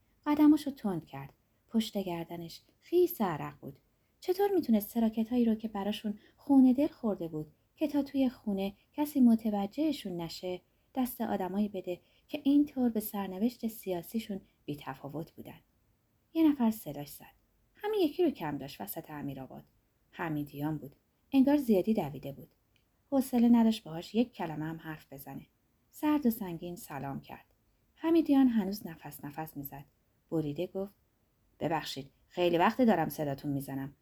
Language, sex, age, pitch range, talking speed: Persian, female, 30-49, 155-250 Hz, 140 wpm